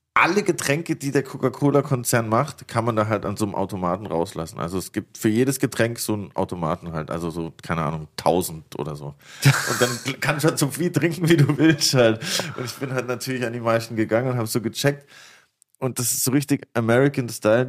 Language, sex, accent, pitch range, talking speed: German, male, German, 110-135 Hz, 215 wpm